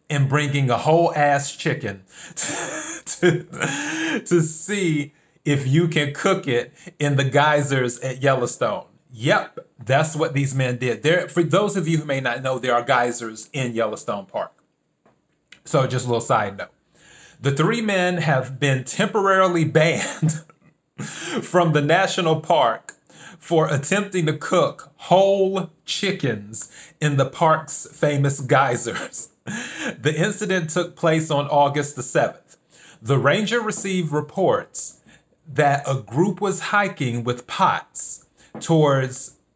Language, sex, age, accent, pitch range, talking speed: English, male, 30-49, American, 135-175 Hz, 135 wpm